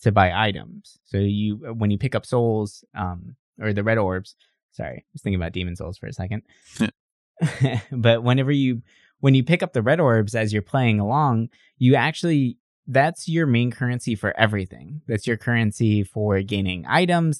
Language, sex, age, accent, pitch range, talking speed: English, male, 20-39, American, 105-130 Hz, 185 wpm